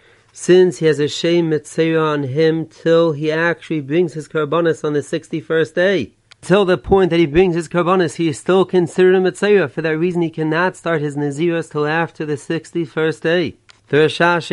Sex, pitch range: male, 150-175 Hz